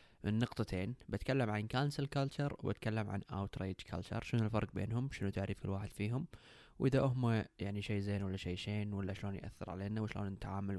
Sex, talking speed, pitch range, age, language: male, 170 wpm, 95-110 Hz, 20-39, Arabic